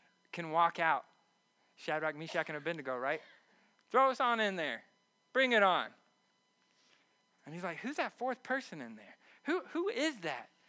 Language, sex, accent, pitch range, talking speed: English, male, American, 155-210 Hz, 165 wpm